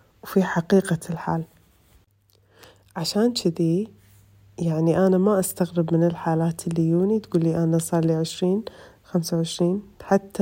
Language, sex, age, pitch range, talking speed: Arabic, female, 30-49, 165-195 Hz, 125 wpm